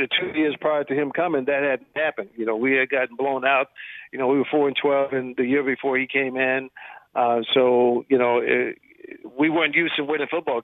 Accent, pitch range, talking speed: American, 130-150 Hz, 230 wpm